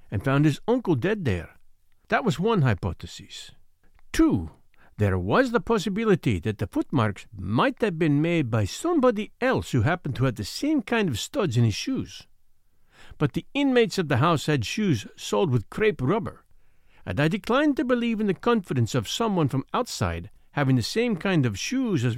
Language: English